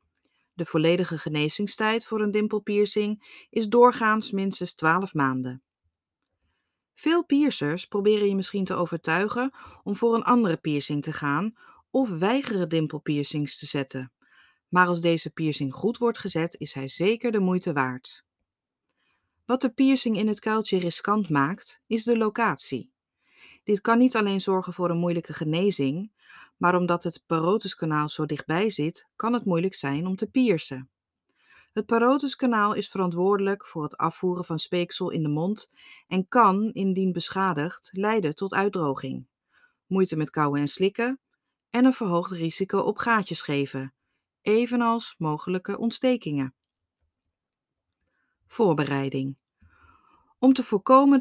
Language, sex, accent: Dutch, female, Dutch